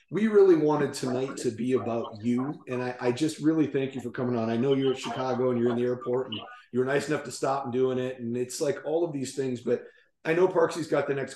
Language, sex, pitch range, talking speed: English, male, 120-145 Hz, 275 wpm